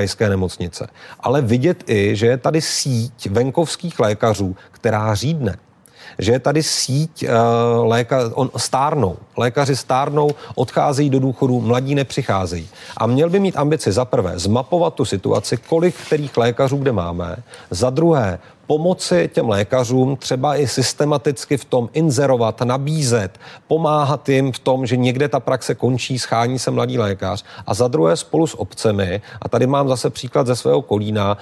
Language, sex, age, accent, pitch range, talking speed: Czech, male, 40-59, native, 105-140 Hz, 145 wpm